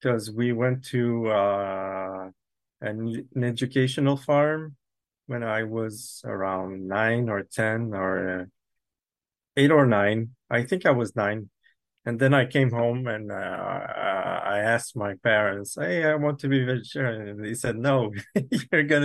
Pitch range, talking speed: 105-125 Hz, 155 wpm